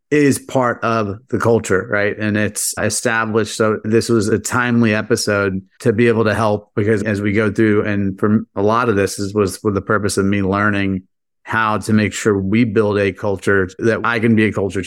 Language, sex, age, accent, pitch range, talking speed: English, male, 30-49, American, 100-115 Hz, 210 wpm